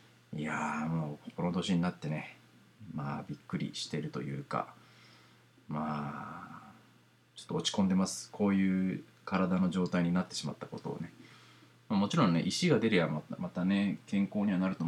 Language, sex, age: Japanese, male, 40-59